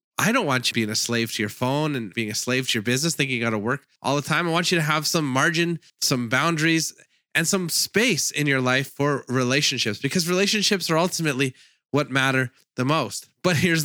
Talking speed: 225 wpm